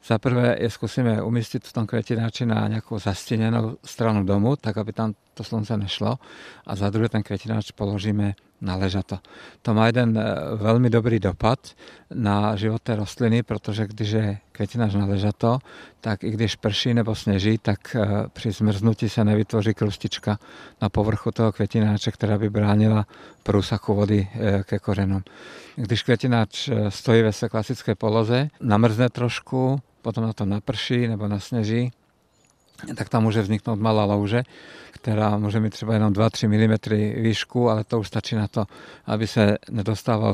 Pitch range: 105-115 Hz